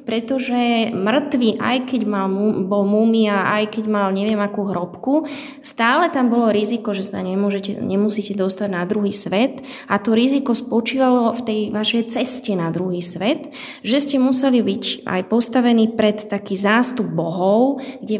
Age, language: 20-39, Slovak